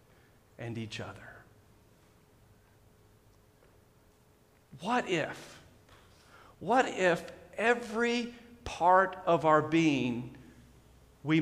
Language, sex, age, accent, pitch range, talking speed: English, male, 40-59, American, 140-205 Hz, 70 wpm